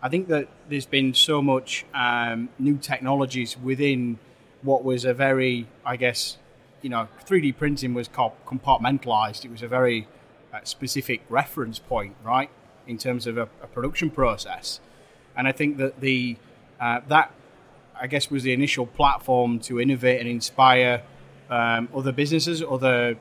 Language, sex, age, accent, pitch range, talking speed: English, male, 30-49, British, 120-140 Hz, 155 wpm